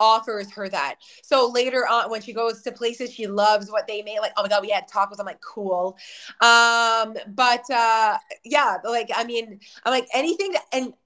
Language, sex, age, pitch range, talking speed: English, female, 20-39, 230-300 Hz, 210 wpm